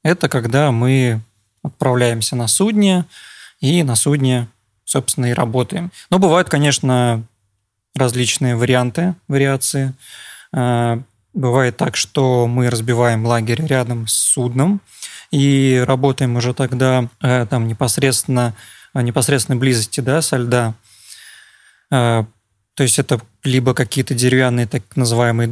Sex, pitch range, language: male, 120-140 Hz, Russian